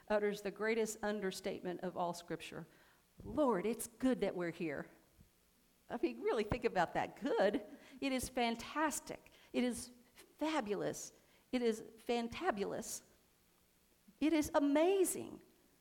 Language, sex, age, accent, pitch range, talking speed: English, female, 50-69, American, 205-270 Hz, 120 wpm